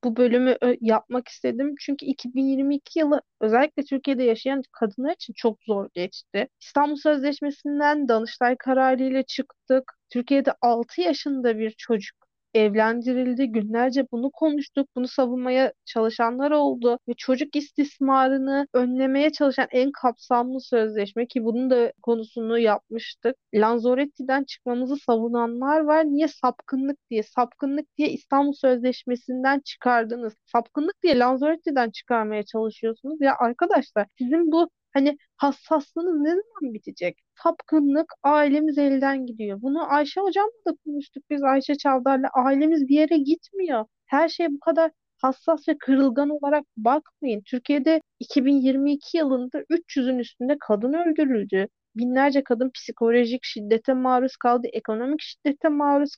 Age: 30-49